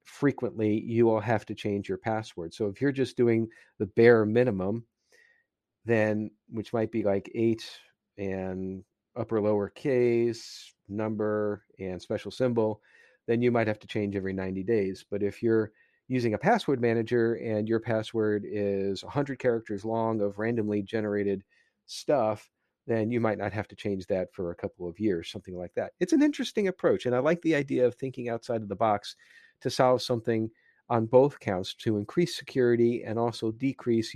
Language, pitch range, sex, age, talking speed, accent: English, 105-120 Hz, male, 40-59, 175 wpm, American